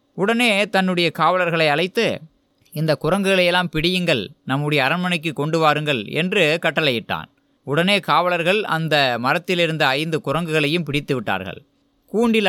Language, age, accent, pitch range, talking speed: Tamil, 20-39, native, 145-195 Hz, 110 wpm